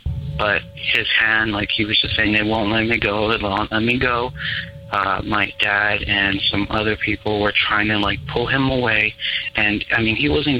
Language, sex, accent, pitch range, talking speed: English, male, American, 100-115 Hz, 210 wpm